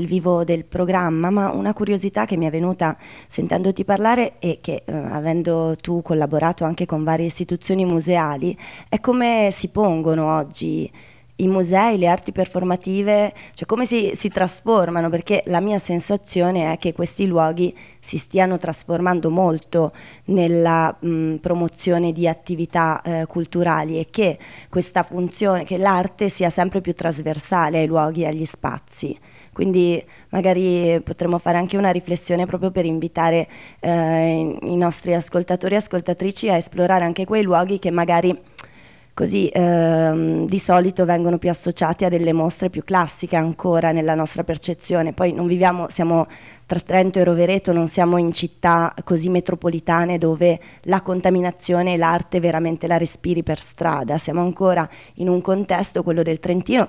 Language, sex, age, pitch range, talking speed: Italian, female, 20-39, 165-185 Hz, 150 wpm